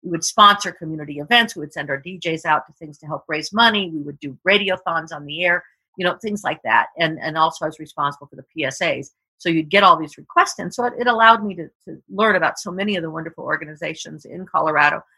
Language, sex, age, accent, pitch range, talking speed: English, female, 50-69, American, 150-180 Hz, 250 wpm